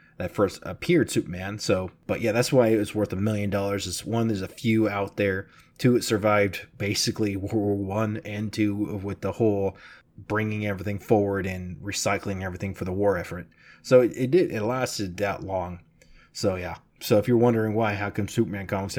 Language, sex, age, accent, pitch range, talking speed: English, male, 20-39, American, 100-115 Hz, 200 wpm